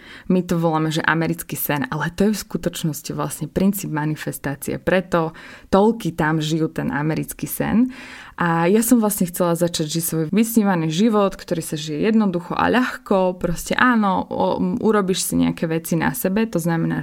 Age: 20-39